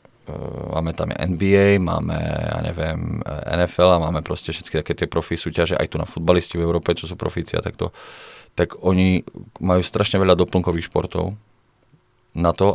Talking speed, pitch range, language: 170 wpm, 85-100 Hz, Czech